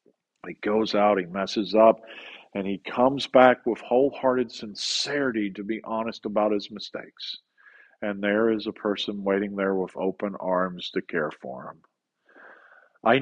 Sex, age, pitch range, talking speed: male, 50-69, 105-130 Hz, 155 wpm